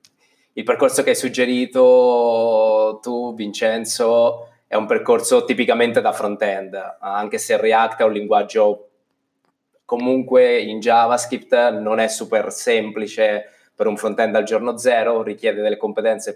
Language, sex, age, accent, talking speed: Italian, male, 20-39, native, 130 wpm